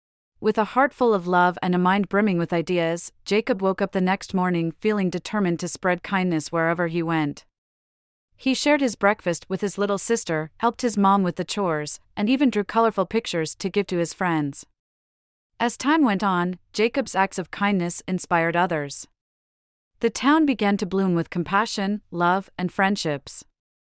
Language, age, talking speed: English, 30-49, 175 wpm